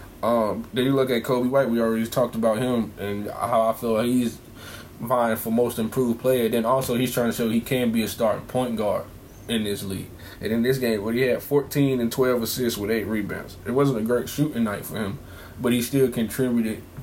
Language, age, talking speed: English, 20-39, 225 wpm